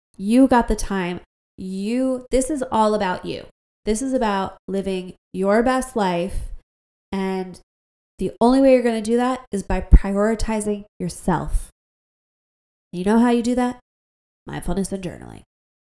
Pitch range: 180-225 Hz